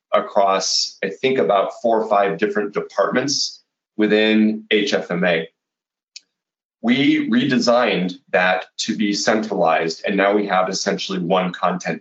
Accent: American